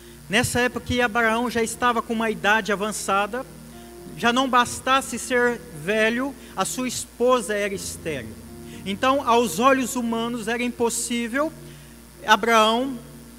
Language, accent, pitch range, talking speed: Portuguese, Brazilian, 220-265 Hz, 120 wpm